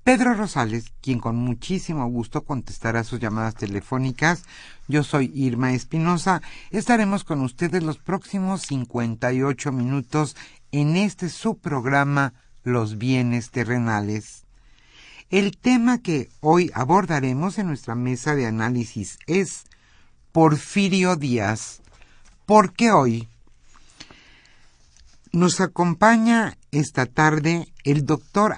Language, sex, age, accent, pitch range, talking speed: Spanish, male, 50-69, Mexican, 115-170 Hz, 105 wpm